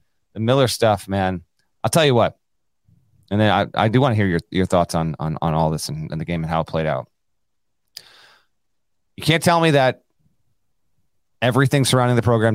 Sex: male